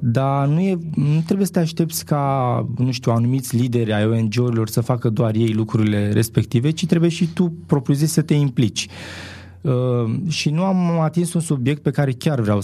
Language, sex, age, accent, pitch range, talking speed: Romanian, male, 20-39, native, 110-150 Hz, 195 wpm